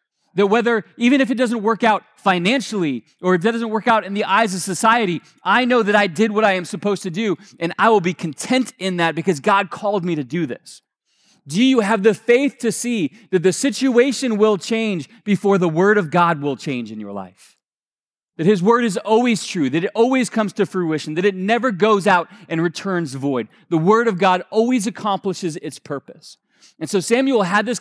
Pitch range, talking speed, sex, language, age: 175-225 Hz, 215 wpm, male, English, 30-49